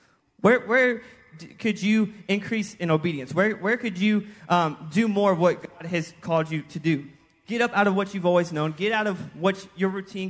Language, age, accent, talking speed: English, 20-39, American, 210 wpm